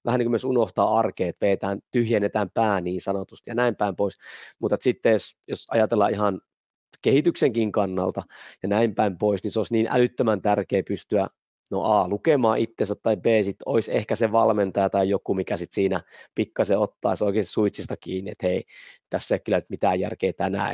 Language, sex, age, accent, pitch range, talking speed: Finnish, male, 20-39, native, 100-125 Hz, 185 wpm